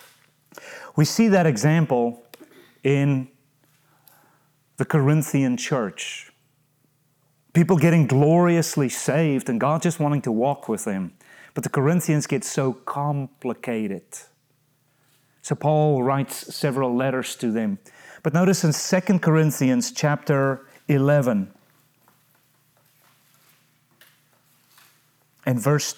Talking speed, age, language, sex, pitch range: 95 wpm, 30-49, English, male, 135-160 Hz